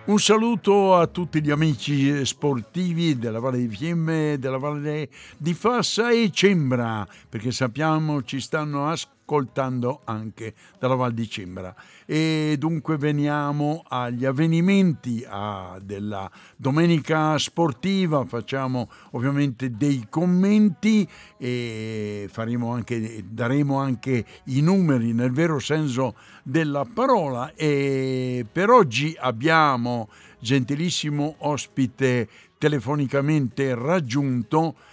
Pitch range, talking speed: 130-180 Hz, 100 wpm